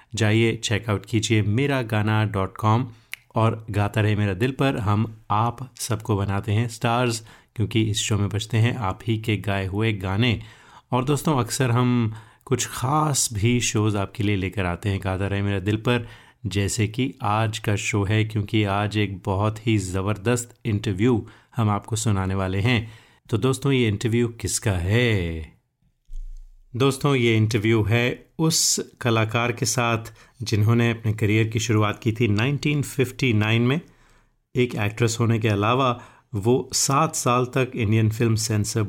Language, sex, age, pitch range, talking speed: Hindi, male, 30-49, 105-120 Hz, 155 wpm